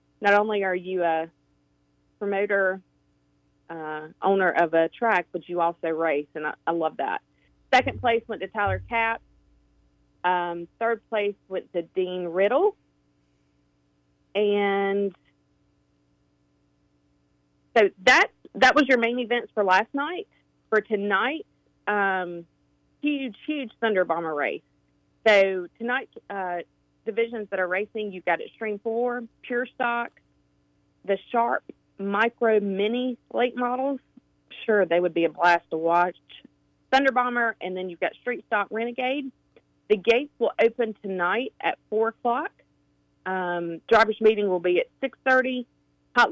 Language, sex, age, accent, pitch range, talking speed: English, female, 40-59, American, 170-235 Hz, 135 wpm